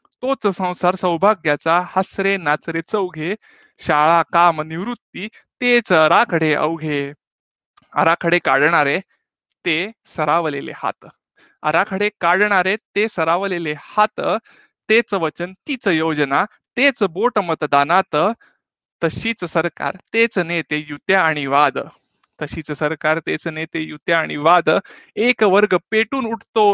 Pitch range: 160-210 Hz